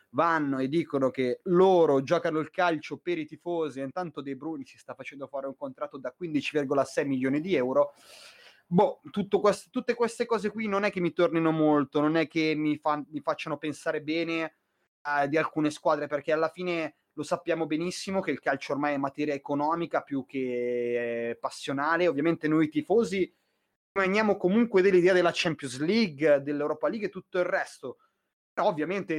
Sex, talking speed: male, 175 wpm